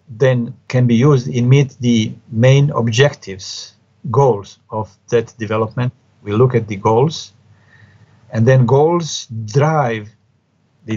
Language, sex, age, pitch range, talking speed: English, male, 50-69, 110-135 Hz, 125 wpm